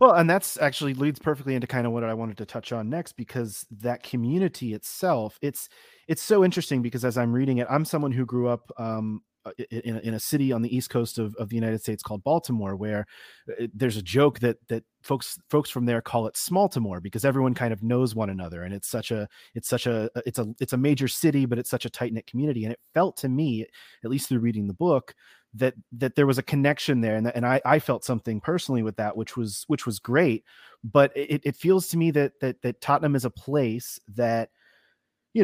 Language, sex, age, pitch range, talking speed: English, male, 30-49, 115-145 Hz, 240 wpm